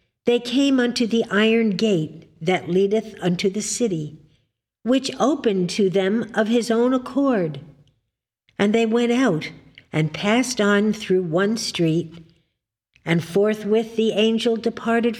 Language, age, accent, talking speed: English, 60-79, American, 135 wpm